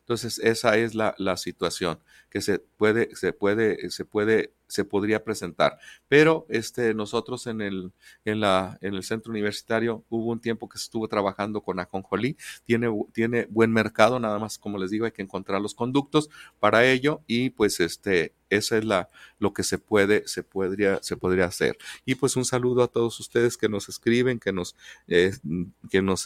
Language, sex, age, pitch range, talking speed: Spanish, male, 40-59, 95-115 Hz, 185 wpm